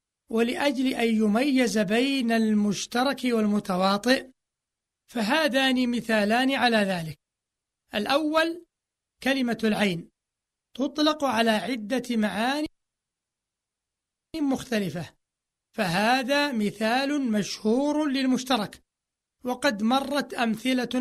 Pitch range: 220-270 Hz